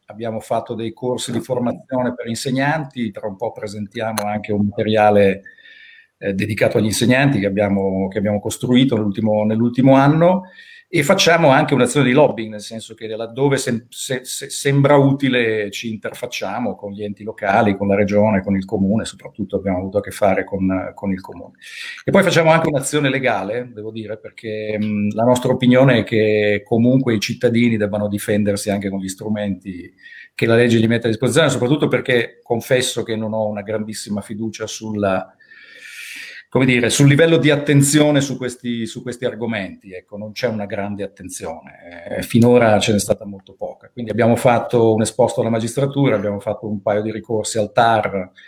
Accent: native